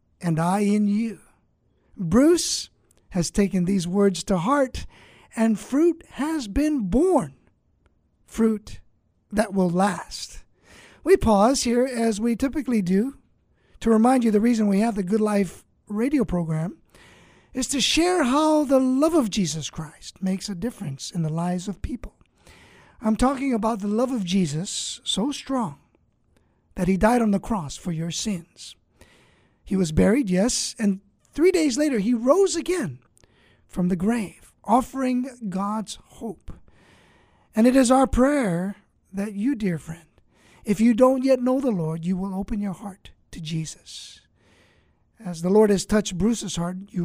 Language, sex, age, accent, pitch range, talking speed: English, male, 50-69, American, 180-245 Hz, 155 wpm